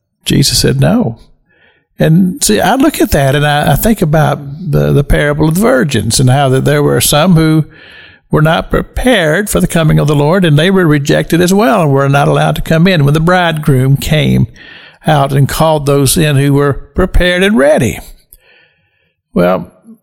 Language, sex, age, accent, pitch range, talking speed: English, male, 60-79, American, 140-175 Hz, 190 wpm